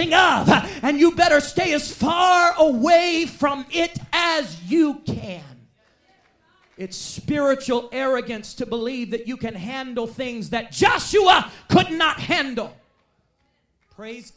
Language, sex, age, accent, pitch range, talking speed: English, male, 40-59, American, 200-290 Hz, 120 wpm